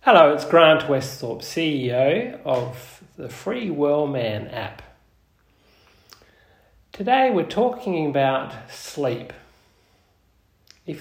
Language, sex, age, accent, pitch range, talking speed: English, male, 40-59, Australian, 115-150 Hz, 85 wpm